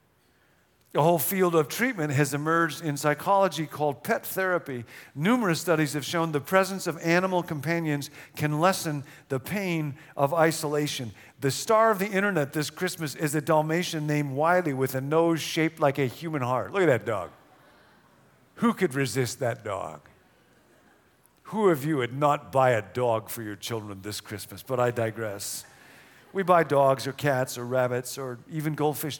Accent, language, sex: American, English, male